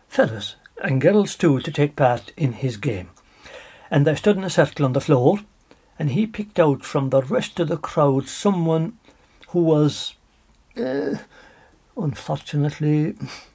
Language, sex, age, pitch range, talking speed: English, male, 60-79, 125-155 Hz, 145 wpm